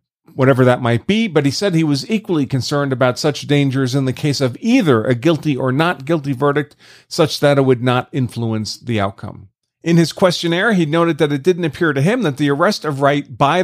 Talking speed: 220 wpm